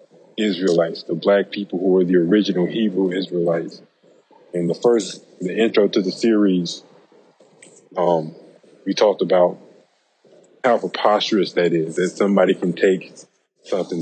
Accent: American